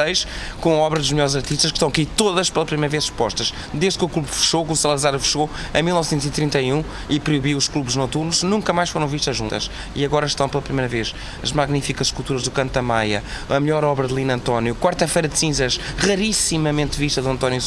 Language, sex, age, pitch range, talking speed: Portuguese, male, 20-39, 125-150 Hz, 205 wpm